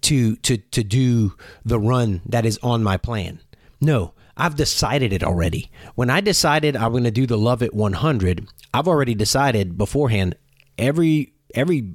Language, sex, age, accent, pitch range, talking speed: English, male, 30-49, American, 110-150 Hz, 165 wpm